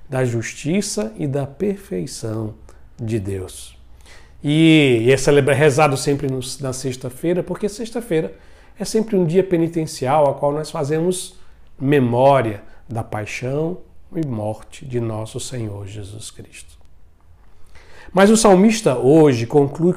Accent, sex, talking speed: Brazilian, male, 115 wpm